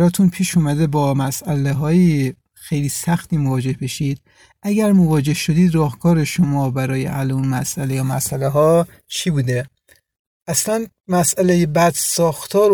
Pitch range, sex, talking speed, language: 140-180 Hz, male, 125 wpm, Persian